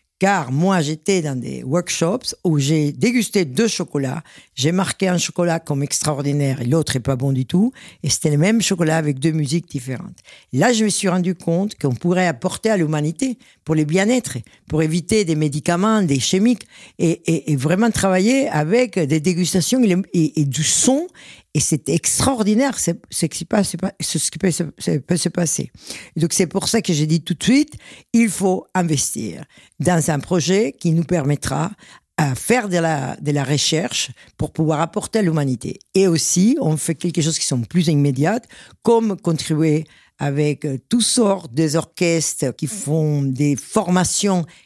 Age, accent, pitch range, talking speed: 60-79, French, 150-195 Hz, 170 wpm